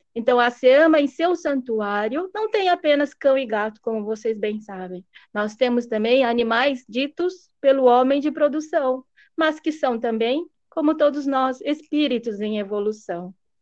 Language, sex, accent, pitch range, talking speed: Portuguese, female, Brazilian, 235-300 Hz, 155 wpm